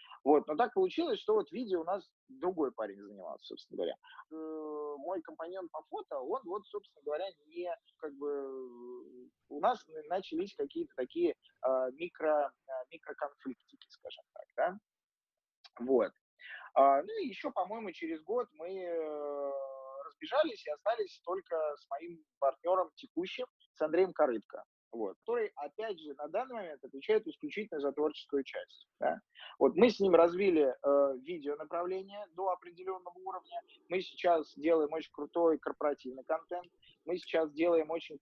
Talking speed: 140 wpm